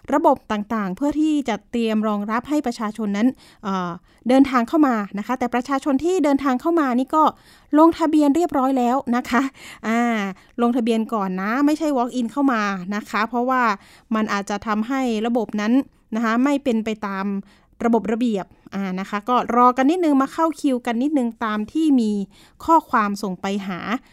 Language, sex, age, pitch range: Thai, female, 20-39, 215-275 Hz